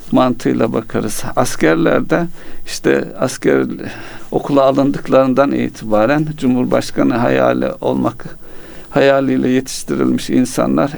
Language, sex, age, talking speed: Turkish, male, 50-69, 75 wpm